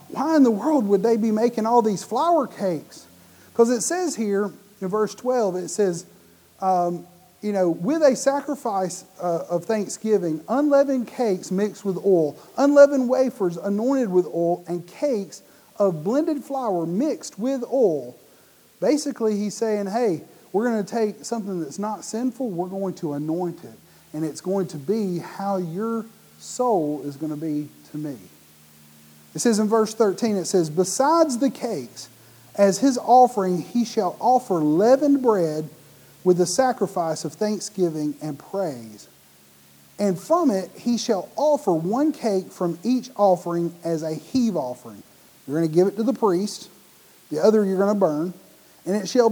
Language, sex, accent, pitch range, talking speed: English, male, American, 175-240 Hz, 165 wpm